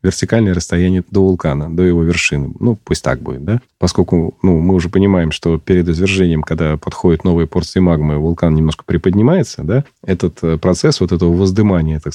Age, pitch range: 30-49, 85-110 Hz